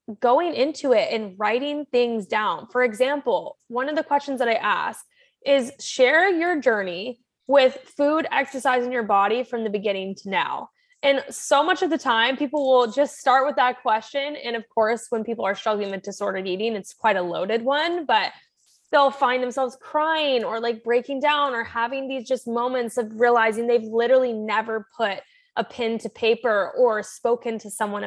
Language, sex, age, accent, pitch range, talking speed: English, female, 20-39, American, 220-275 Hz, 185 wpm